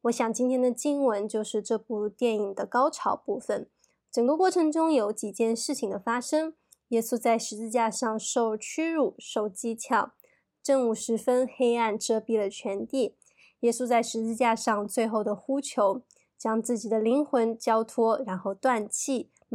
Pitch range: 225-265 Hz